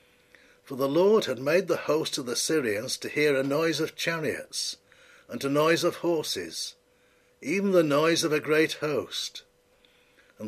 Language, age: English, 60-79